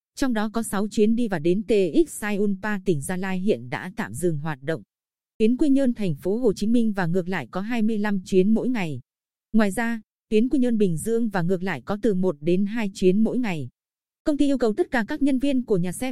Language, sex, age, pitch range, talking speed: Vietnamese, female, 20-39, 185-230 Hz, 245 wpm